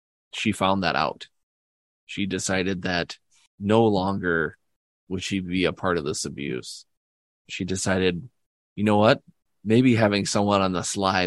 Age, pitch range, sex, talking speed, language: 20-39, 85-100 Hz, male, 150 wpm, English